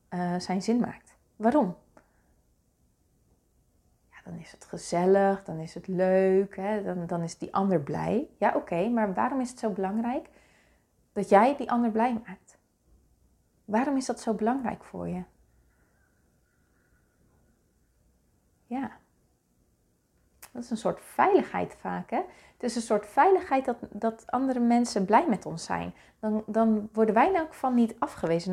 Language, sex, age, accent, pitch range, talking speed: Dutch, female, 30-49, Dutch, 180-240 Hz, 155 wpm